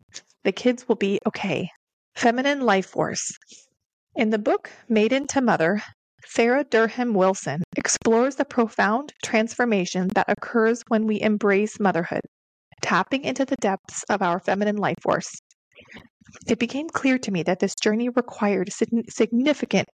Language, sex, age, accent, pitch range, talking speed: English, female, 30-49, American, 200-245 Hz, 140 wpm